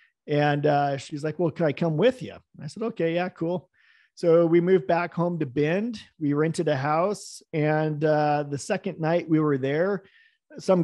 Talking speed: 195 wpm